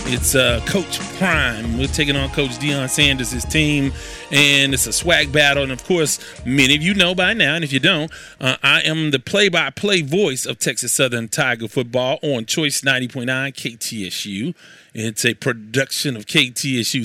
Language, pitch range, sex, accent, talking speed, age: English, 135-180 Hz, male, American, 170 wpm, 30-49